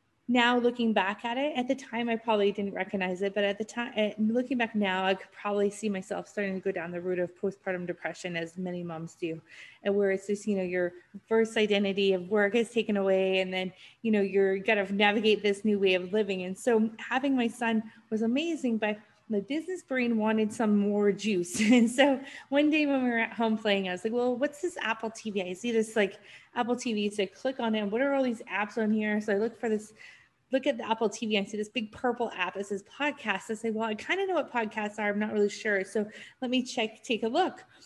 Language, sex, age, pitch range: English, female, 30-49, 200-235 Hz